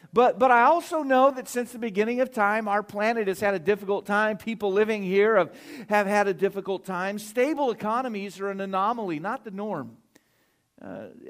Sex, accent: male, American